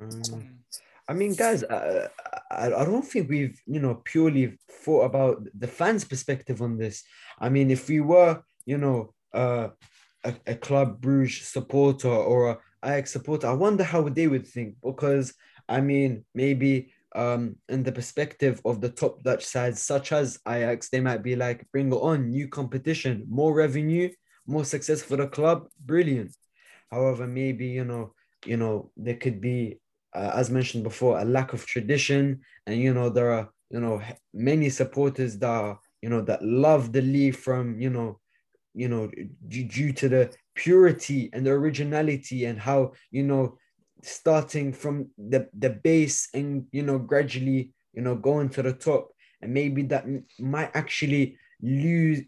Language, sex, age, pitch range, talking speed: English, male, 20-39, 125-145 Hz, 170 wpm